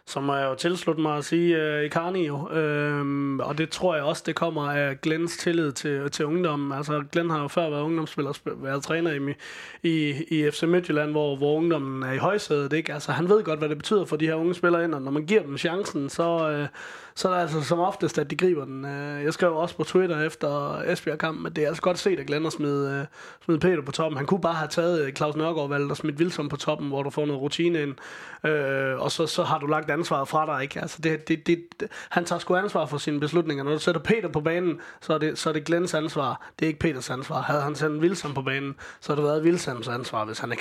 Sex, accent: male, native